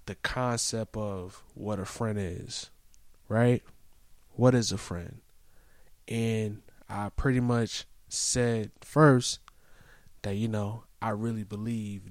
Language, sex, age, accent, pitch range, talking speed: English, male, 20-39, American, 100-120 Hz, 120 wpm